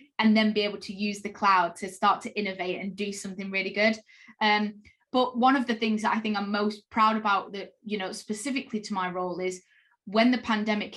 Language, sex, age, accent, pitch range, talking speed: English, female, 20-39, British, 205-240 Hz, 225 wpm